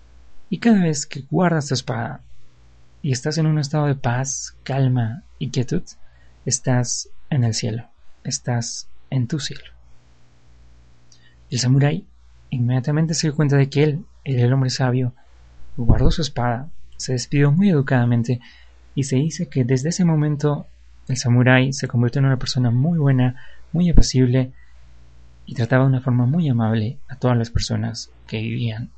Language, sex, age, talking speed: Spanish, male, 30-49, 155 wpm